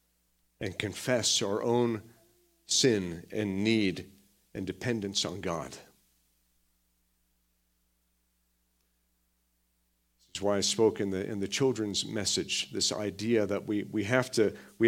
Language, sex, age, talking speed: English, male, 50-69, 115 wpm